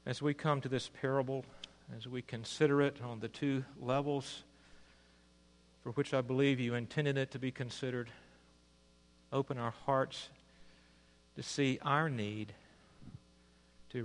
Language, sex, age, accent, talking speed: English, male, 50-69, American, 135 wpm